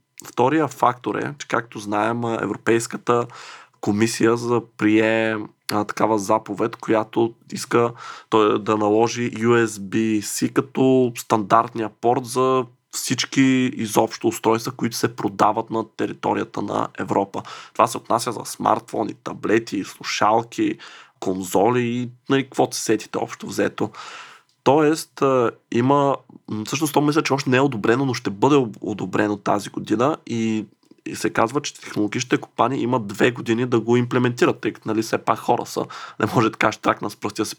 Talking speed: 145 wpm